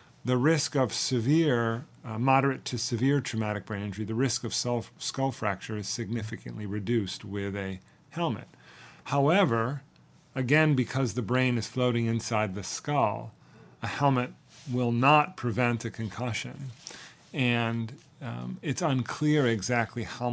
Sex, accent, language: male, American, English